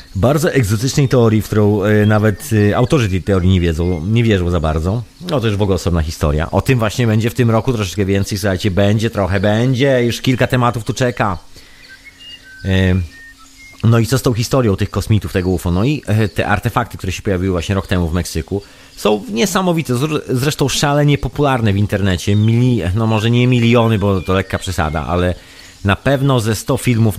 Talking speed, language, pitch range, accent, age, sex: 195 wpm, Polish, 95-115 Hz, native, 30-49, male